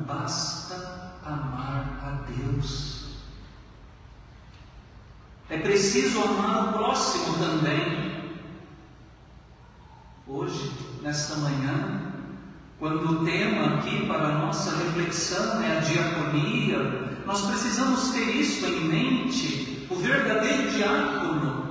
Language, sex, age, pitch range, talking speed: Portuguese, male, 40-59, 140-220 Hz, 90 wpm